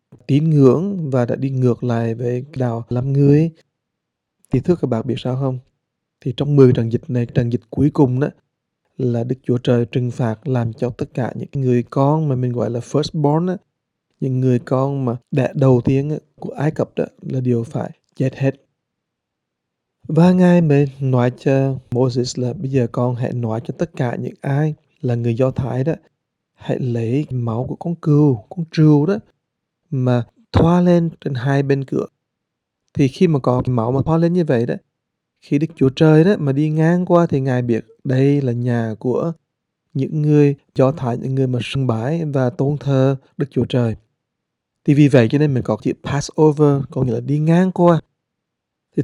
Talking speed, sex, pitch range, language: 200 wpm, male, 125-150 Hz, English